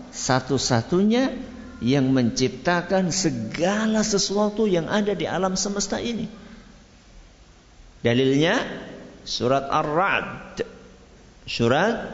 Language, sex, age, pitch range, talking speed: Malay, male, 50-69, 140-205 Hz, 75 wpm